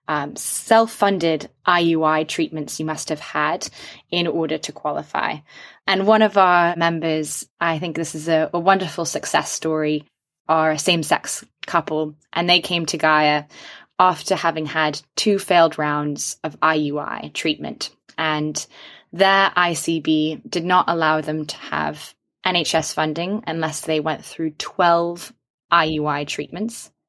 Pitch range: 155-180 Hz